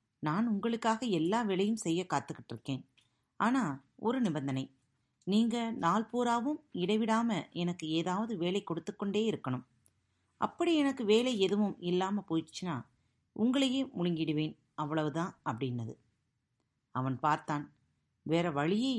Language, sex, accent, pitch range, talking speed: Tamil, female, native, 135-210 Hz, 100 wpm